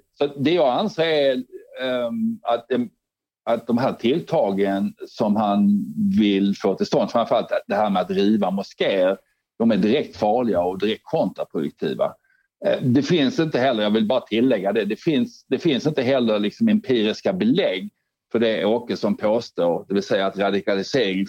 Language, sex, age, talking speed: Swedish, male, 60-79, 160 wpm